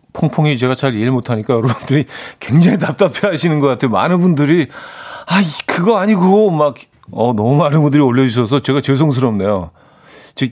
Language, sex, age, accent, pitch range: Korean, male, 40-59, native, 110-150 Hz